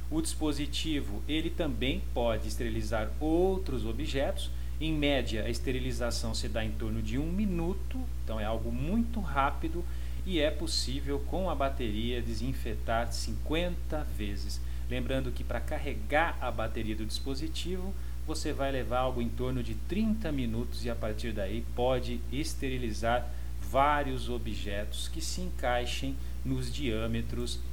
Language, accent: Portuguese, Brazilian